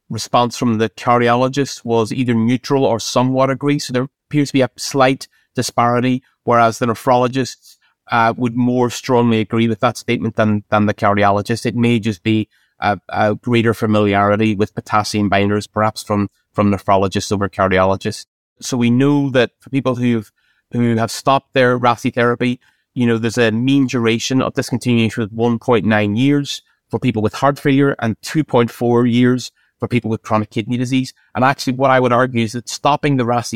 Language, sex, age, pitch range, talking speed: English, male, 30-49, 110-125 Hz, 175 wpm